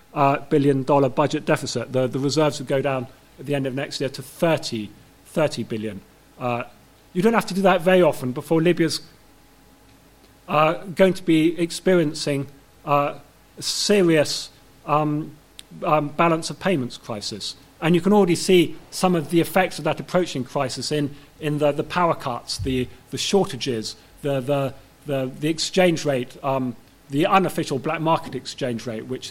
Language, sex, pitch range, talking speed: English, male, 130-160 Hz, 170 wpm